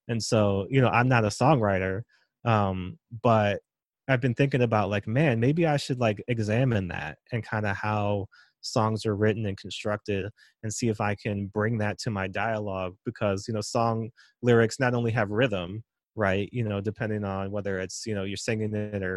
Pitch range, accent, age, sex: 100-115 Hz, American, 20-39, male